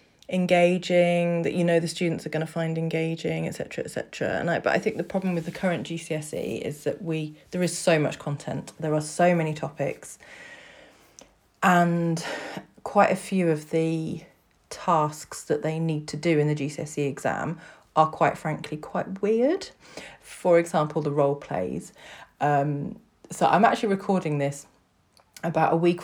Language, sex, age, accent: English, female, 30-49, British